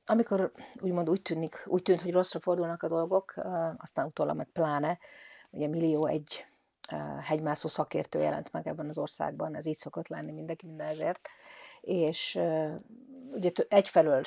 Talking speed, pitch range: 145 wpm, 155-200 Hz